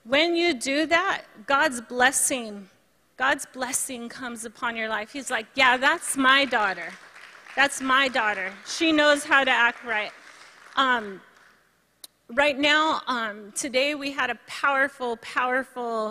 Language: English